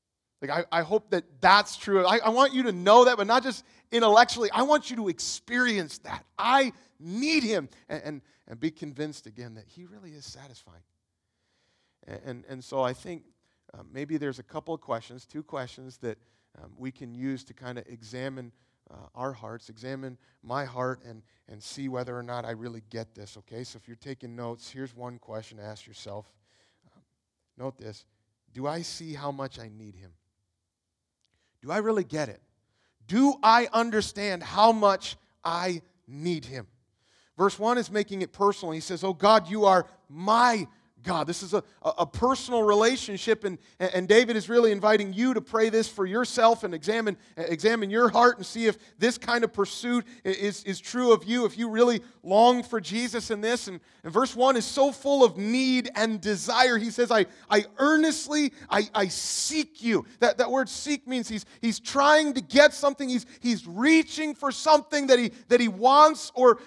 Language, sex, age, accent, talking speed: English, male, 40-59, American, 190 wpm